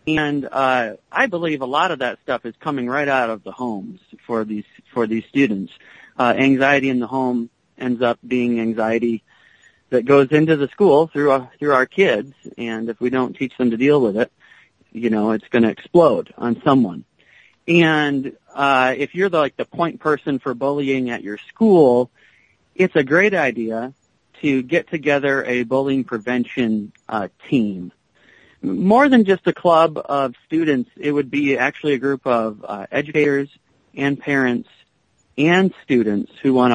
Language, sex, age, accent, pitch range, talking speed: English, male, 40-59, American, 120-145 Hz, 175 wpm